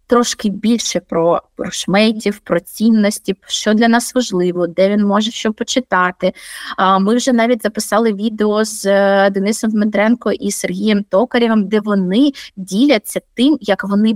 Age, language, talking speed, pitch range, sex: 20-39, Ukrainian, 135 wpm, 195-240 Hz, female